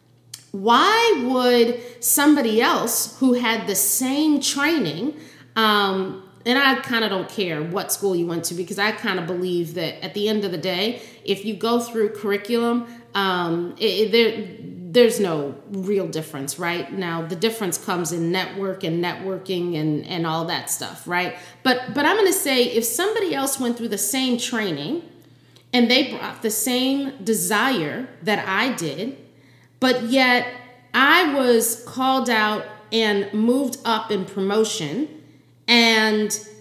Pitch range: 190-250 Hz